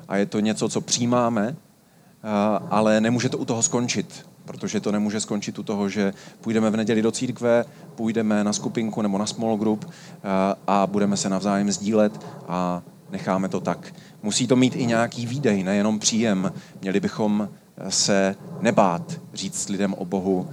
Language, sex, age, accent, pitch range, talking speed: Czech, male, 30-49, native, 105-145 Hz, 165 wpm